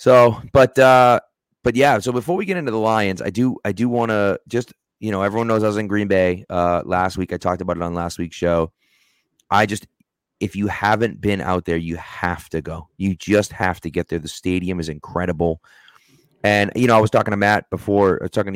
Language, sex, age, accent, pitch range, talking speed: English, male, 30-49, American, 90-115 Hz, 230 wpm